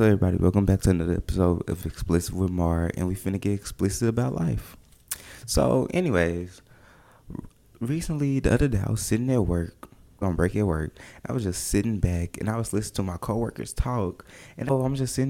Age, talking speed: 20-39, 200 wpm